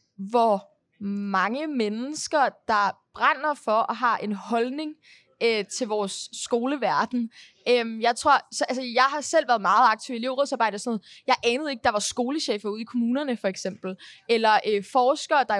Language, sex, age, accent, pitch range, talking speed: Danish, female, 20-39, native, 225-285 Hz, 175 wpm